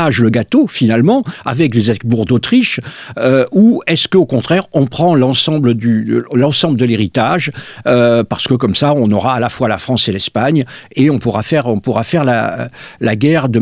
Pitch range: 120-165 Hz